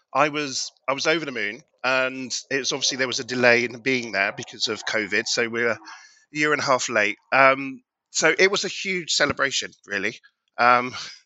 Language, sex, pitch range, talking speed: English, male, 110-140 Hz, 205 wpm